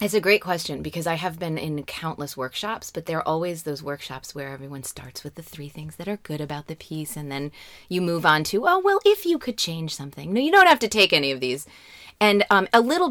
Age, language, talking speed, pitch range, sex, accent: 30-49, English, 255 wpm, 145-200 Hz, female, American